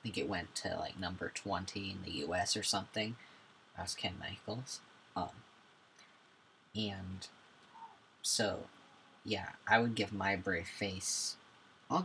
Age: 30-49